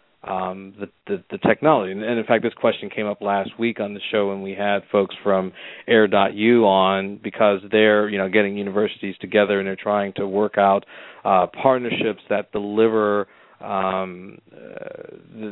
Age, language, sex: 40-59, English, male